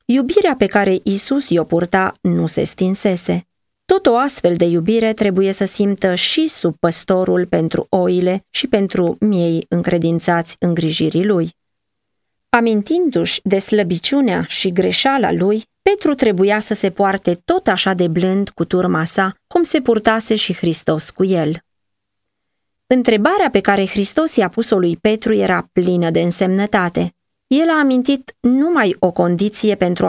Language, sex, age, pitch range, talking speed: Romanian, female, 30-49, 175-225 Hz, 145 wpm